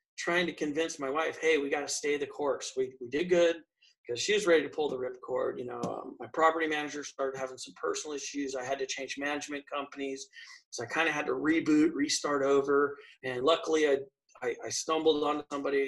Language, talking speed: English, 220 wpm